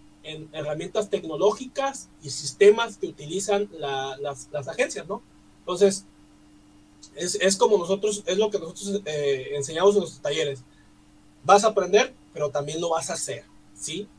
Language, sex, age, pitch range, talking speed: Spanish, male, 30-49, 150-210 Hz, 150 wpm